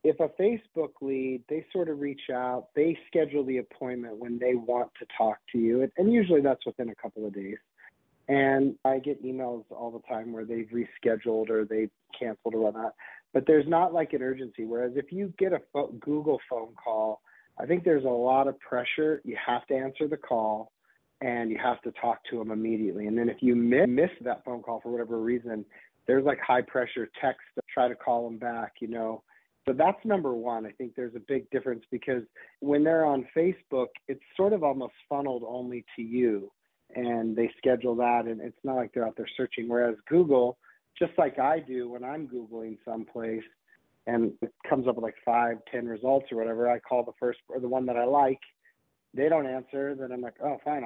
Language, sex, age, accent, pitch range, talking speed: English, male, 40-59, American, 115-140 Hz, 210 wpm